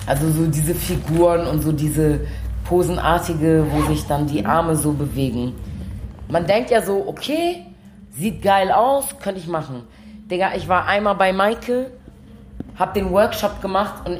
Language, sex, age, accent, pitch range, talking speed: German, female, 30-49, German, 135-175 Hz, 155 wpm